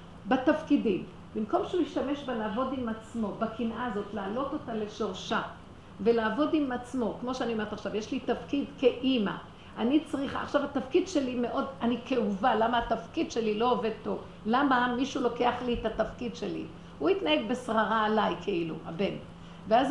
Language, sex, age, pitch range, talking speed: Hebrew, female, 50-69, 220-280 Hz, 155 wpm